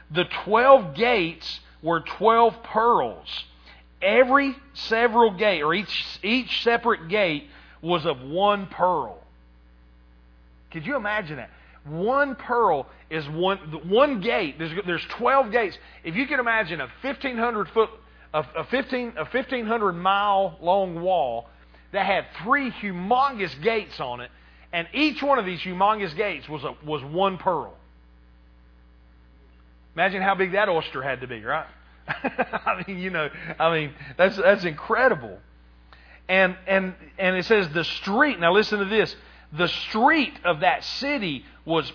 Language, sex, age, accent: English, male, 40-59, American